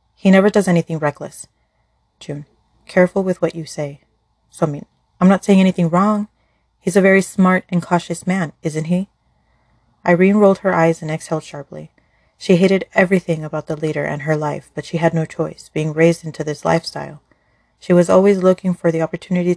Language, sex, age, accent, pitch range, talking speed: English, female, 30-49, American, 155-185 Hz, 190 wpm